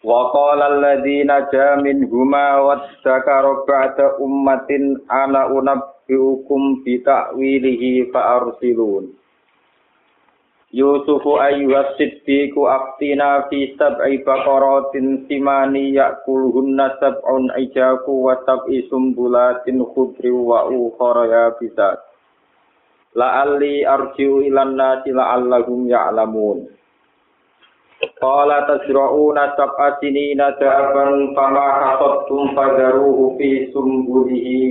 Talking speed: 95 wpm